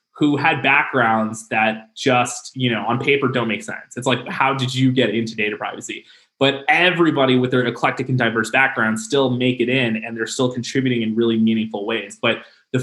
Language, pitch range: English, 120-155 Hz